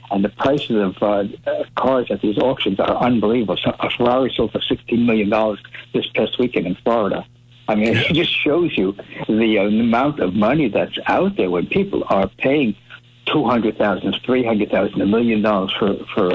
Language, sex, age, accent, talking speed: English, male, 60-79, American, 200 wpm